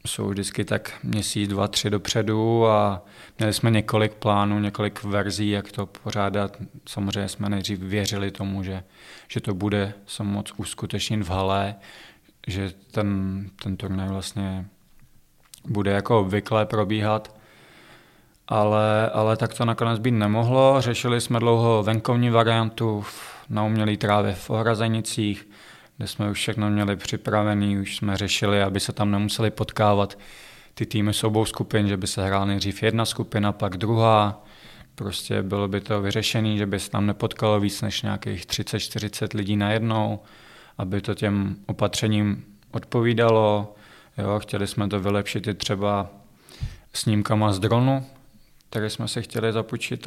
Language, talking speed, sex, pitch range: Czech, 145 wpm, male, 100-110 Hz